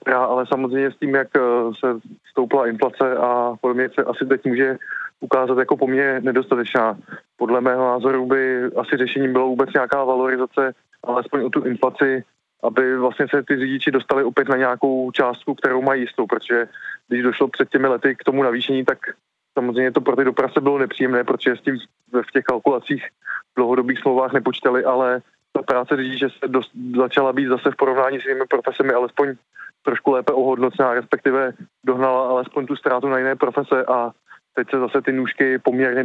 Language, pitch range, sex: Czech, 125-135 Hz, male